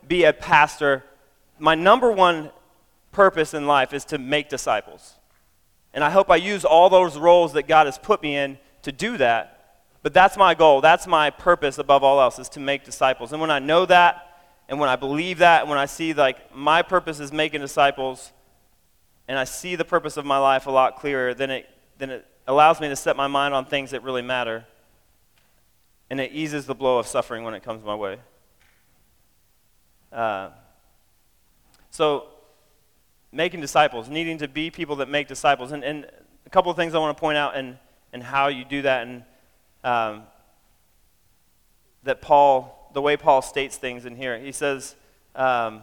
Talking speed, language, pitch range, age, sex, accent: 185 wpm, English, 130-160 Hz, 30-49, male, American